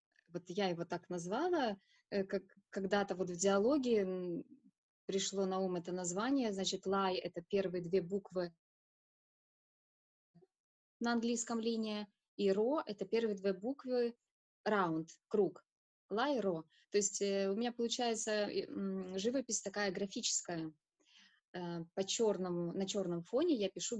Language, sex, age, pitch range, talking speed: Russian, female, 20-39, 180-215 Hz, 120 wpm